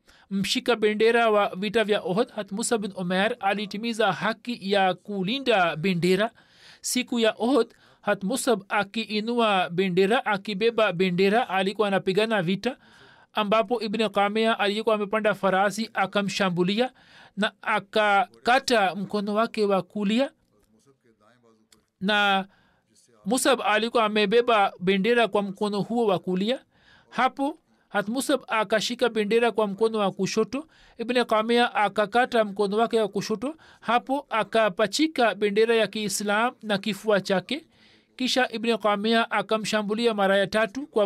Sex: male